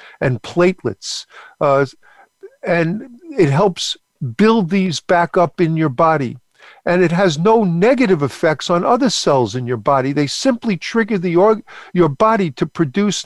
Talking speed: 155 wpm